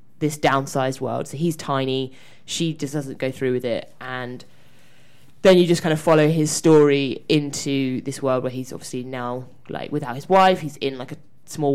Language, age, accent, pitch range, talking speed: English, 20-39, British, 140-160 Hz, 195 wpm